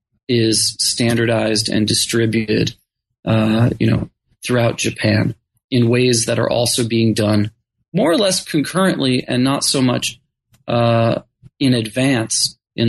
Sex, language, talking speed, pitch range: male, English, 130 wpm, 110-125 Hz